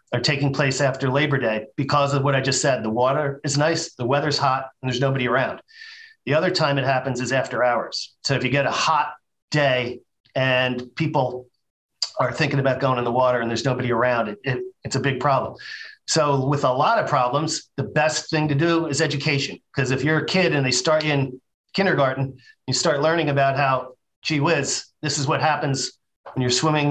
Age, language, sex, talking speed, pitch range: 40-59, English, male, 210 wpm, 130-155 Hz